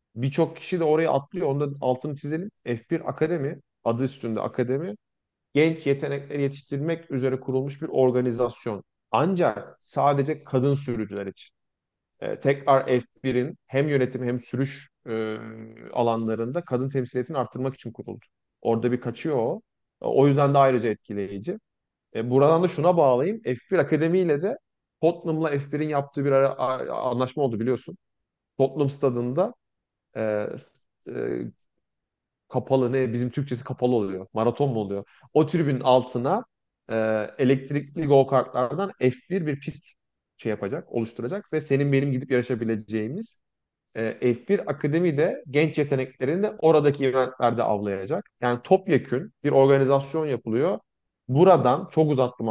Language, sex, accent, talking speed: Turkish, male, native, 120 wpm